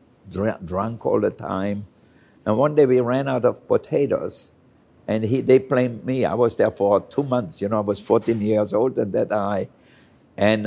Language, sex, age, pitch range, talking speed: English, male, 60-79, 105-125 Hz, 190 wpm